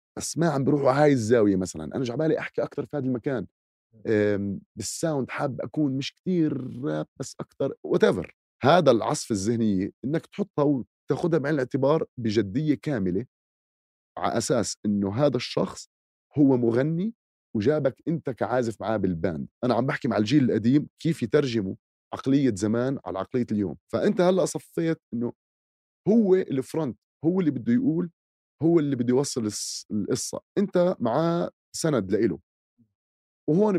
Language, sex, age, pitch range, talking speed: Arabic, male, 30-49, 105-150 Hz, 140 wpm